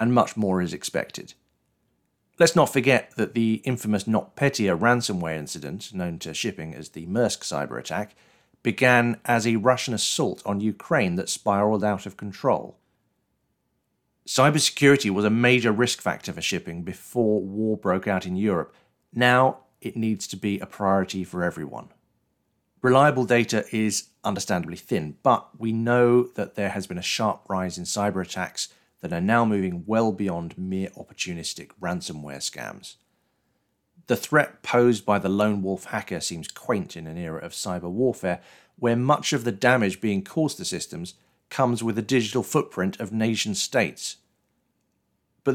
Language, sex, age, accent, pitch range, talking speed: English, male, 40-59, British, 95-125 Hz, 155 wpm